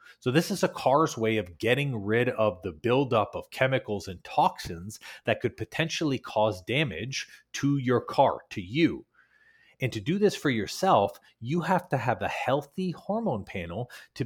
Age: 30-49